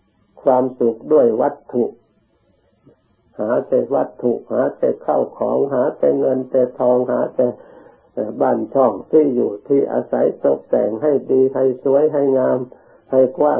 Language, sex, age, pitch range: Thai, male, 60-79, 120-135 Hz